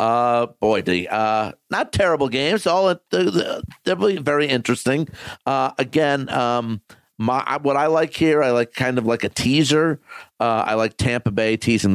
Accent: American